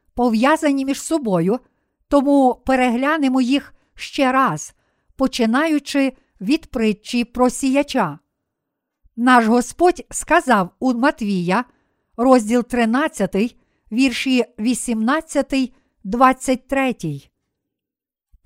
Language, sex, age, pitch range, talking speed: Ukrainian, female, 50-69, 230-280 Hz, 70 wpm